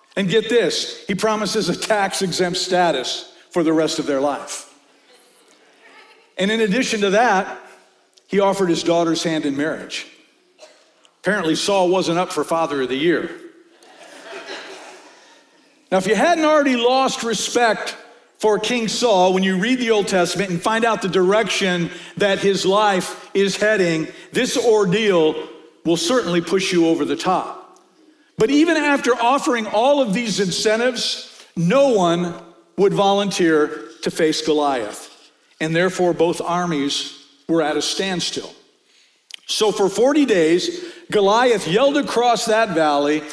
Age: 50-69